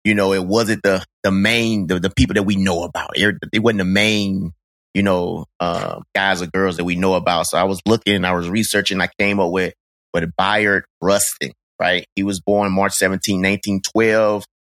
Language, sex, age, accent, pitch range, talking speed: English, male, 30-49, American, 95-105 Hz, 200 wpm